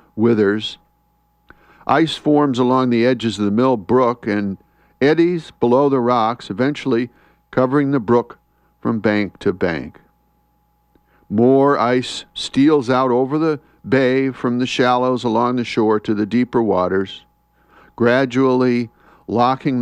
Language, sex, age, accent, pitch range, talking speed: English, male, 50-69, American, 110-140 Hz, 125 wpm